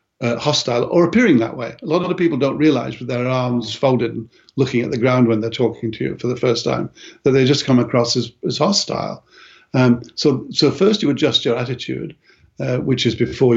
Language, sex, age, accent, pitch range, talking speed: English, male, 60-79, British, 115-140 Hz, 225 wpm